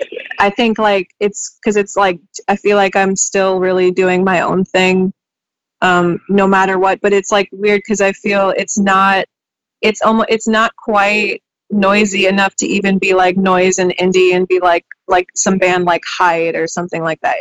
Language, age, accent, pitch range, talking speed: English, 20-39, American, 185-205 Hz, 195 wpm